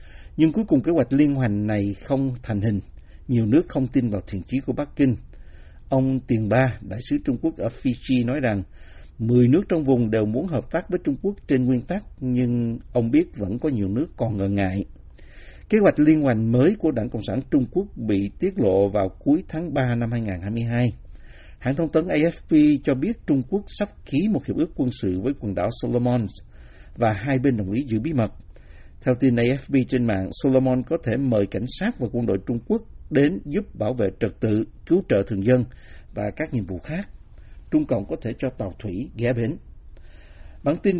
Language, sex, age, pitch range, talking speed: Vietnamese, male, 60-79, 105-140 Hz, 210 wpm